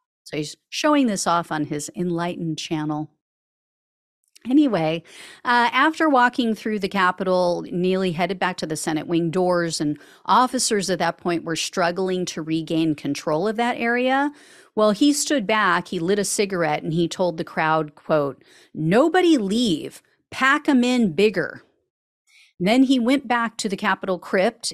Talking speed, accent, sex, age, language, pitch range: 160 wpm, American, female, 40-59, English, 160-225 Hz